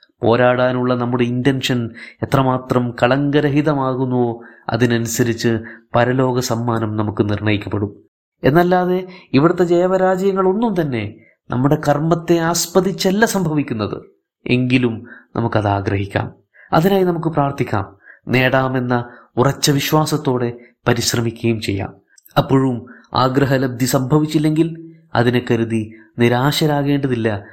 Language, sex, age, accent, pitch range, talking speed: Malayalam, male, 20-39, native, 115-140 Hz, 80 wpm